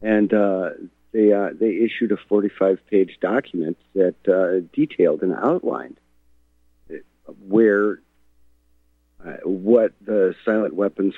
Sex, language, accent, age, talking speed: male, English, American, 50-69, 130 wpm